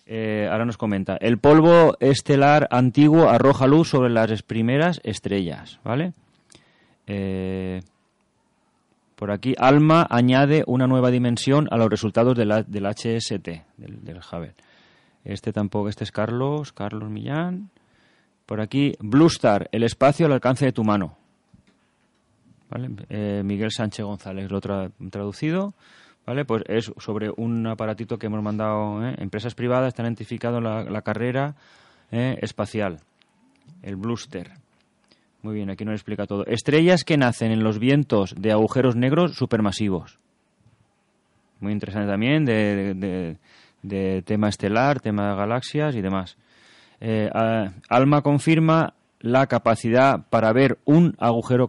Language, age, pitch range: Spanish, 30-49, 105-130 Hz